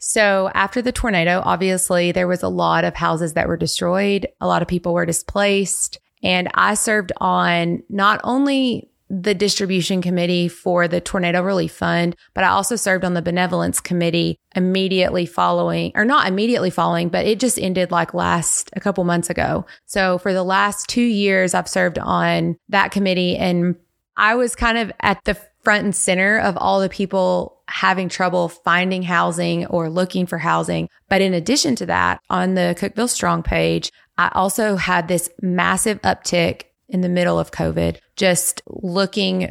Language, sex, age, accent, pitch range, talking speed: English, female, 20-39, American, 175-200 Hz, 175 wpm